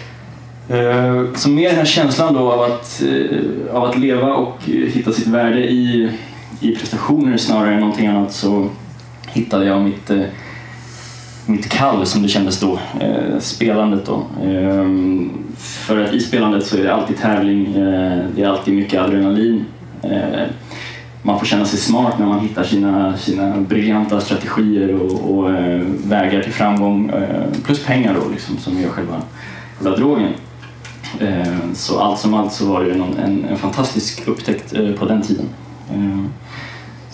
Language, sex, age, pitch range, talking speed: Swedish, male, 20-39, 100-120 Hz, 140 wpm